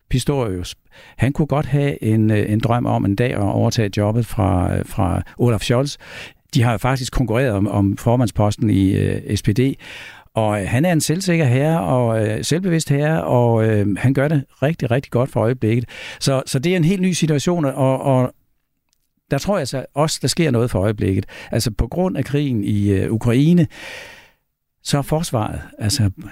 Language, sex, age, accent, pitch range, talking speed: Danish, male, 60-79, native, 110-140 Hz, 185 wpm